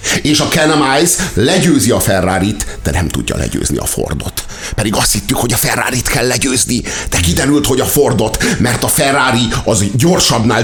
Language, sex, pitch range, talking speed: Hungarian, male, 110-155 Hz, 170 wpm